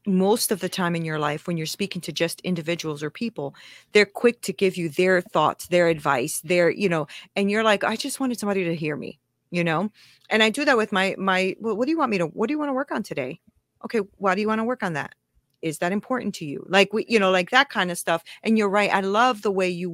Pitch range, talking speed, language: 180-240 Hz, 270 wpm, English